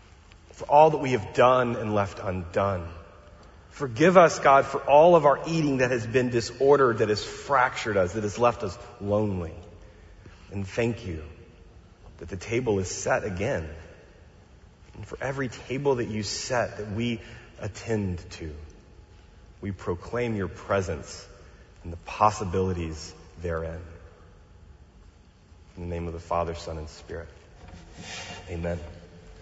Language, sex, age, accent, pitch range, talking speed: English, male, 30-49, American, 85-115 Hz, 140 wpm